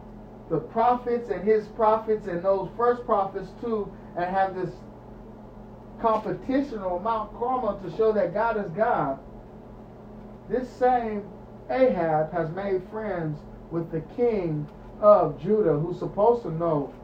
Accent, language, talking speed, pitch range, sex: American, English, 135 wpm, 165-230 Hz, male